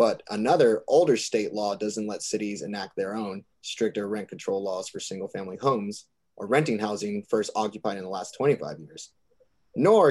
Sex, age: male, 20-39